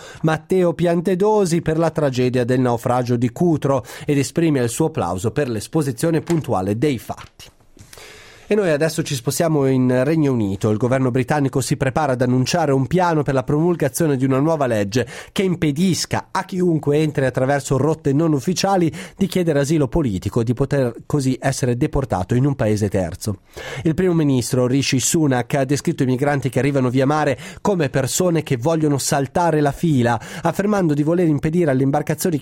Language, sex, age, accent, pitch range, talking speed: Italian, male, 30-49, native, 125-165 Hz, 170 wpm